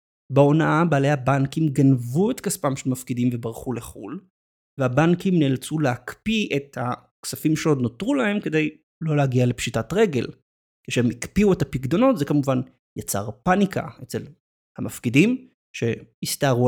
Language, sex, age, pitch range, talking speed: Hebrew, male, 30-49, 125-175 Hz, 120 wpm